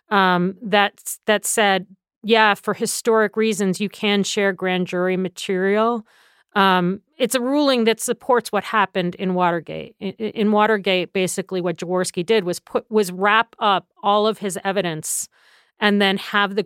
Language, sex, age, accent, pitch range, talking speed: English, female, 40-59, American, 180-215 Hz, 155 wpm